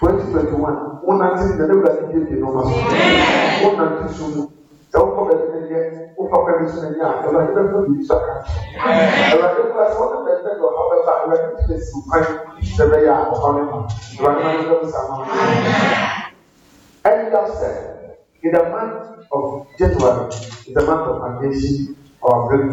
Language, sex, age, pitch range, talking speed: English, male, 50-69, 125-170 Hz, 50 wpm